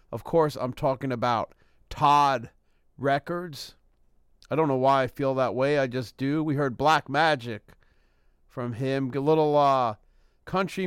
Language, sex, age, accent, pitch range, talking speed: English, male, 40-59, American, 115-150 Hz, 155 wpm